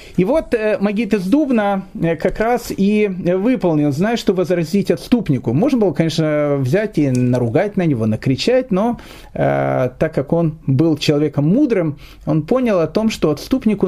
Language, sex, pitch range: Russian, male, 145-210 Hz